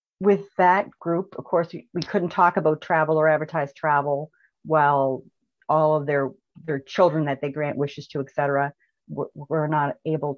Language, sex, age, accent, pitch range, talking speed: English, female, 40-59, American, 155-180 Hz, 170 wpm